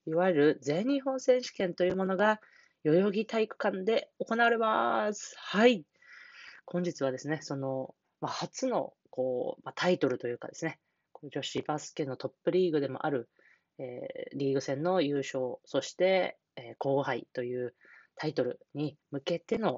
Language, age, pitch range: Japanese, 20-39, 135-195 Hz